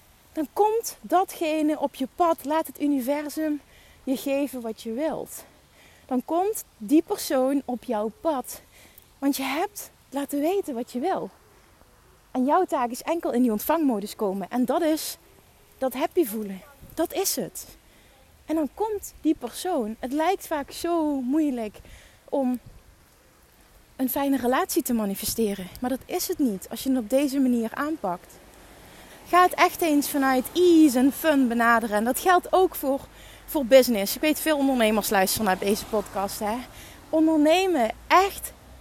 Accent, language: Dutch, Dutch